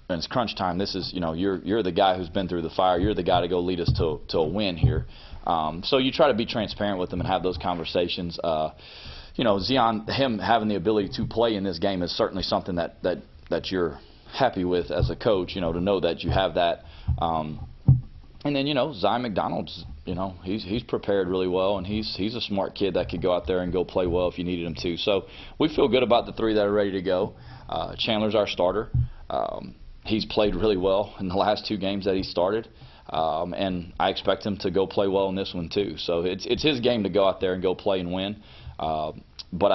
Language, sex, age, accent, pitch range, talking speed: English, male, 30-49, American, 85-105 Hz, 250 wpm